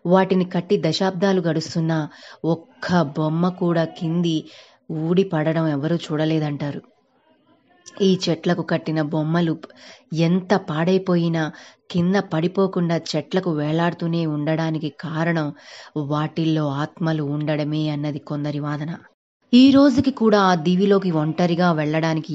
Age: 20-39